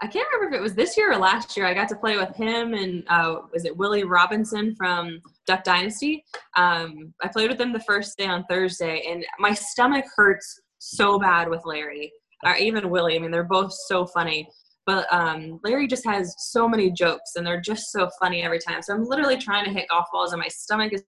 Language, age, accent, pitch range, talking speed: English, 20-39, American, 165-200 Hz, 225 wpm